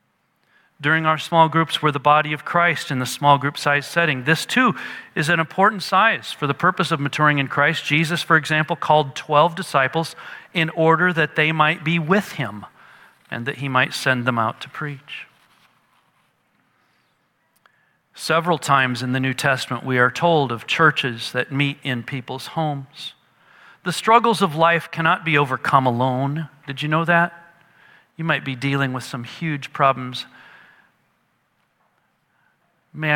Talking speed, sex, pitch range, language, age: 160 wpm, male, 135-160 Hz, English, 40-59